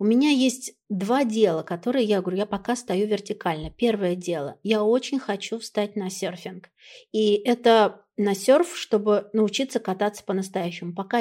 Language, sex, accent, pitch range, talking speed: Russian, female, native, 190-230 Hz, 155 wpm